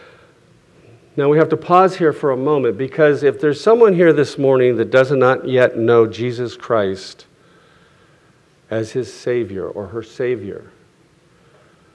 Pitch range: 115-160 Hz